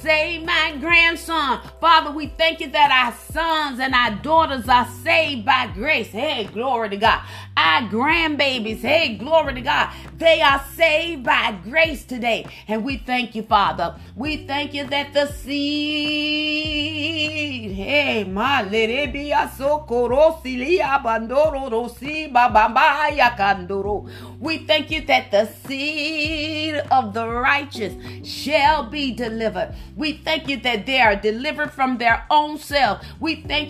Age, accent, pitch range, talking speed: 30-49, American, 235-310 Hz, 130 wpm